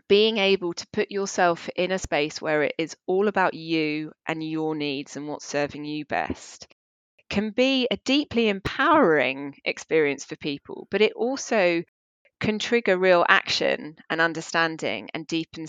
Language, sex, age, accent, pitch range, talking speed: English, female, 20-39, British, 155-195 Hz, 155 wpm